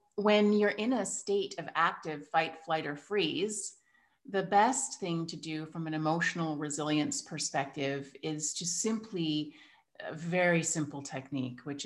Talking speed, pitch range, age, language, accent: 145 wpm, 155-200 Hz, 30-49, English, American